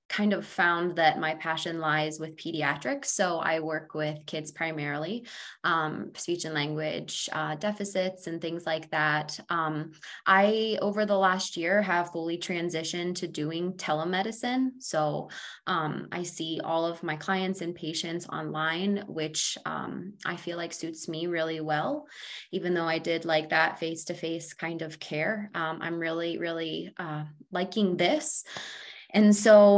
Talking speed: 155 wpm